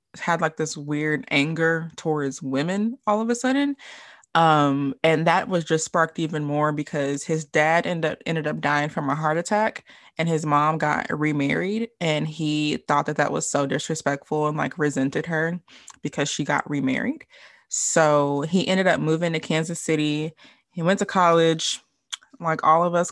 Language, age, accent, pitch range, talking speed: English, 20-39, American, 155-190 Hz, 175 wpm